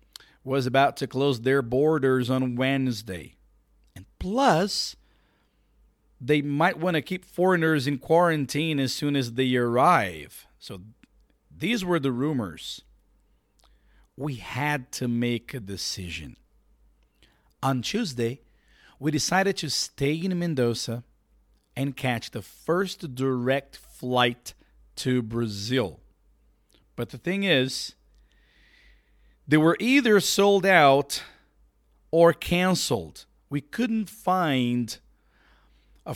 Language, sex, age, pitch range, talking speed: Portuguese, male, 50-69, 115-150 Hz, 110 wpm